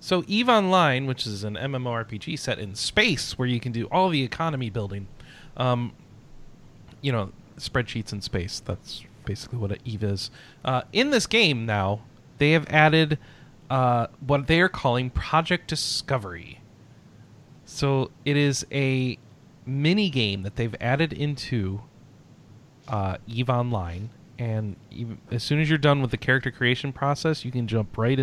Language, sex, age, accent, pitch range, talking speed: English, male, 30-49, American, 110-145 Hz, 150 wpm